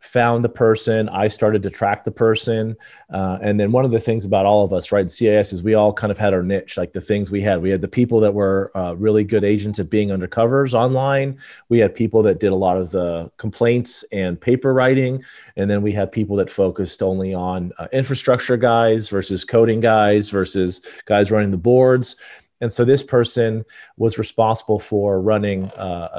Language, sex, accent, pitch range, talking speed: English, male, American, 100-115 Hz, 210 wpm